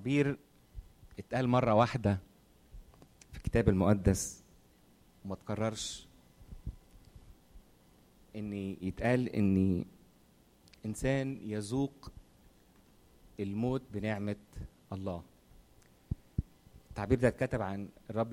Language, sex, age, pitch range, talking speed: Arabic, male, 30-49, 95-115 Hz, 70 wpm